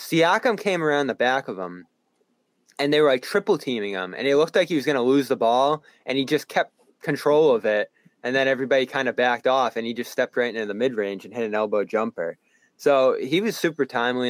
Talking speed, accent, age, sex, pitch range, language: 245 wpm, American, 20-39, male, 105-145 Hz, English